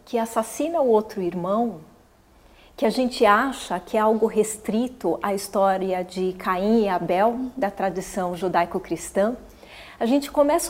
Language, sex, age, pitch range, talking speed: Portuguese, female, 40-59, 200-275 Hz, 140 wpm